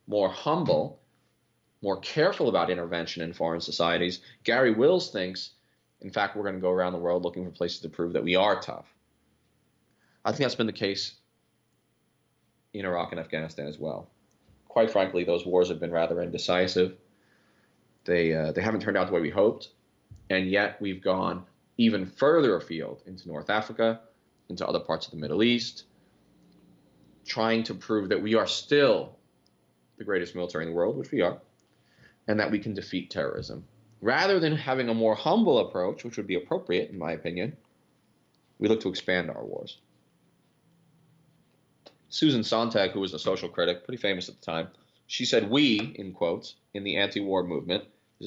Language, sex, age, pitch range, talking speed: English, male, 30-49, 85-115 Hz, 175 wpm